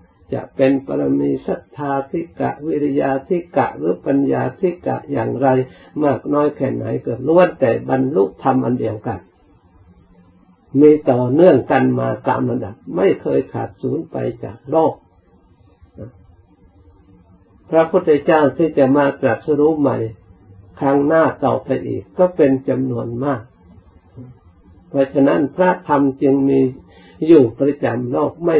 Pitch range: 95-140 Hz